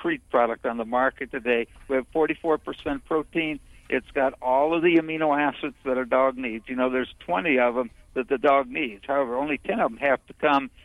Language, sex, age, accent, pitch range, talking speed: English, male, 60-79, American, 120-150 Hz, 210 wpm